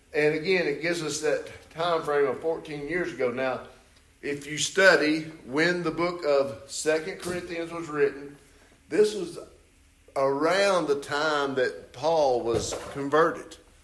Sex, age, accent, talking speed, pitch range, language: male, 50-69, American, 145 wpm, 115-170 Hz, English